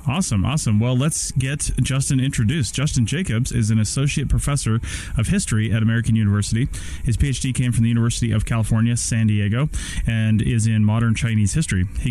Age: 30-49